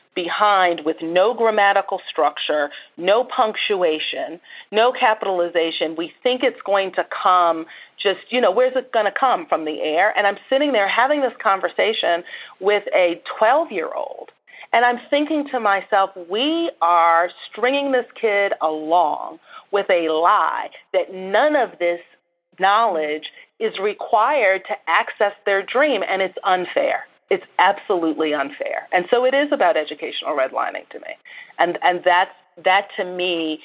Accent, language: American, English